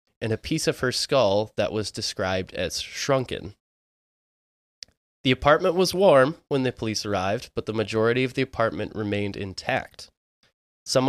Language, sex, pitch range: English, male, 105-130 Hz